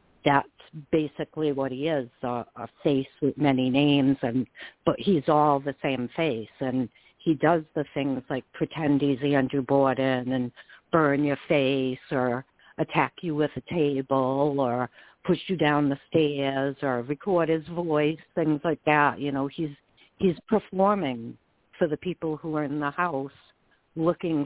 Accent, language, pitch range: American, English, 135-160 Hz